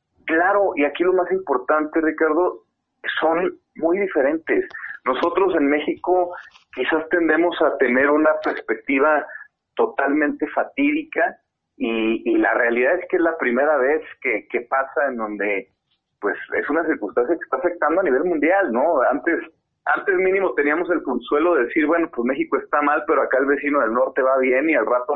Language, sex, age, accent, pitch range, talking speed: Spanish, male, 40-59, Mexican, 135-195 Hz, 170 wpm